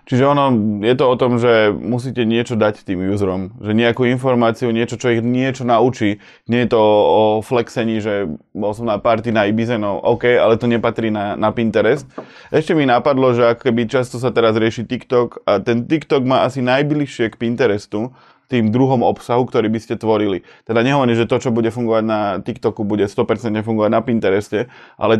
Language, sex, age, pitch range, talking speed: Slovak, male, 20-39, 110-125 Hz, 190 wpm